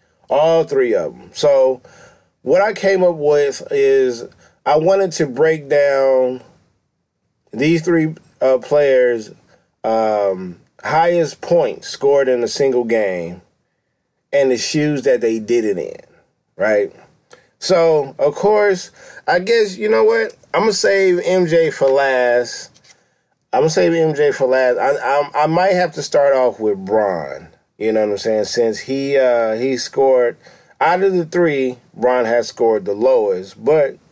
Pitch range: 125-195 Hz